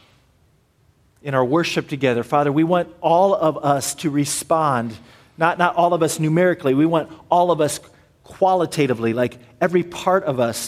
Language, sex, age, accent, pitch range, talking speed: English, male, 40-59, American, 120-155 Hz, 165 wpm